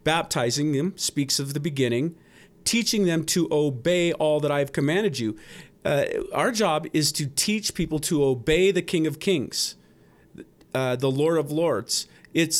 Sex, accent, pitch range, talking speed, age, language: male, American, 130-180 Hz, 165 wpm, 40-59, English